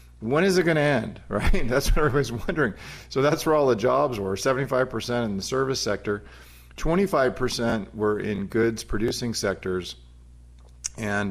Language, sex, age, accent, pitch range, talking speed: English, male, 40-59, American, 100-135 Hz, 160 wpm